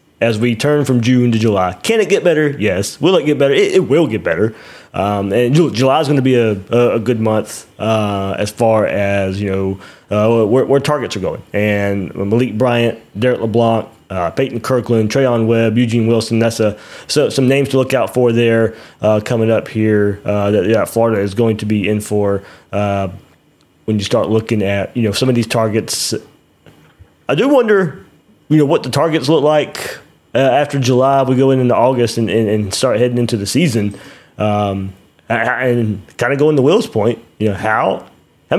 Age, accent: 20-39, American